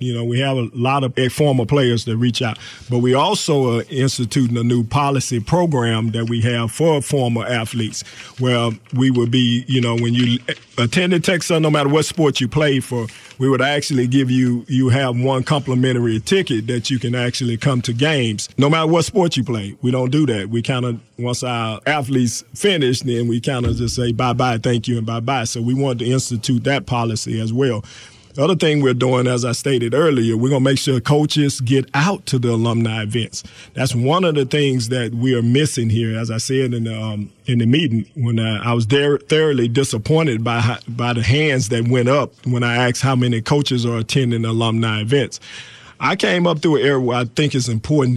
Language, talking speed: English, 215 wpm